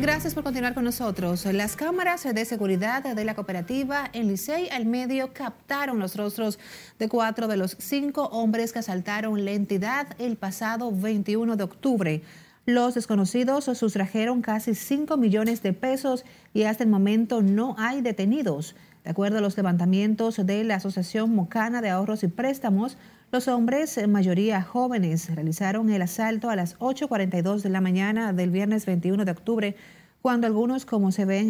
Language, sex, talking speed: Spanish, female, 165 wpm